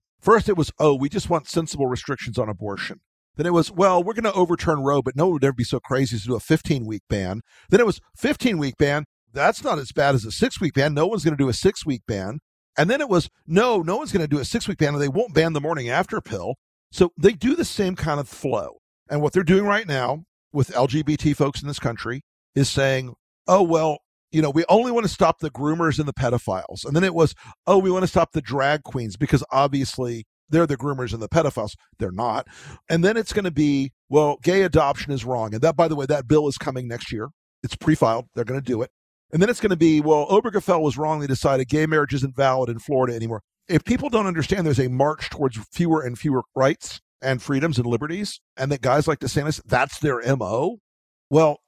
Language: English